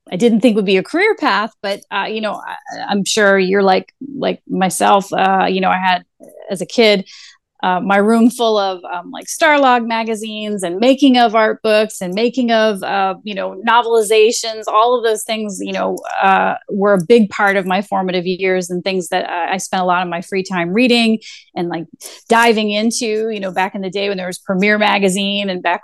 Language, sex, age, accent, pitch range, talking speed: English, female, 30-49, American, 190-230 Hz, 215 wpm